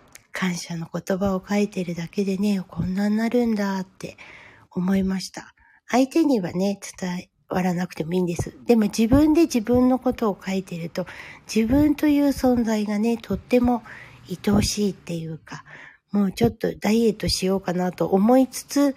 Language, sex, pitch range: Japanese, female, 185-240 Hz